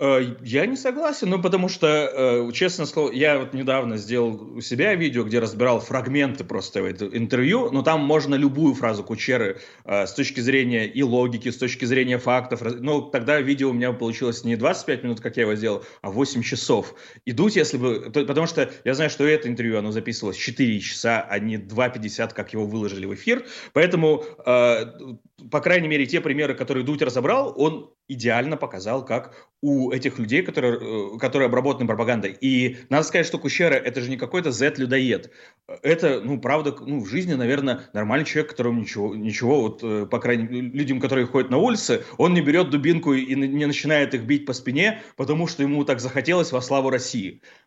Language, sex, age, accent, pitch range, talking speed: Russian, male, 30-49, native, 120-150 Hz, 185 wpm